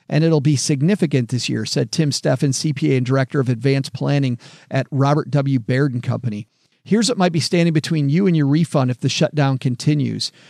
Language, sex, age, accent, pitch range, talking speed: English, male, 50-69, American, 140-170 Hz, 200 wpm